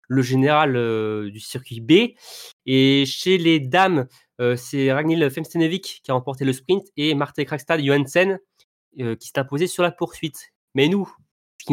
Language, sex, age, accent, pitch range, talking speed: French, male, 20-39, French, 120-170 Hz, 175 wpm